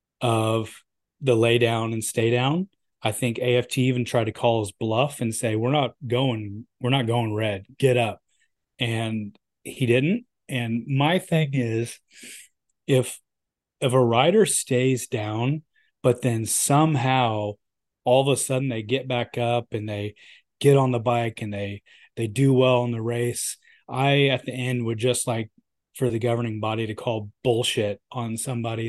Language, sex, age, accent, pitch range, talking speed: English, male, 30-49, American, 115-140 Hz, 170 wpm